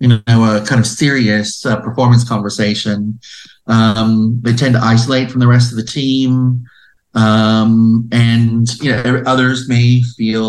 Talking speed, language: 155 wpm, English